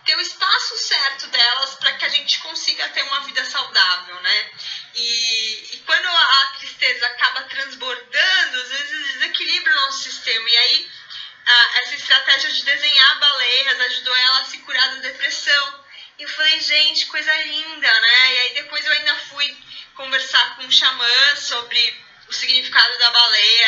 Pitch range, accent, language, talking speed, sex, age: 235-305 Hz, Brazilian, Portuguese, 160 wpm, female, 20-39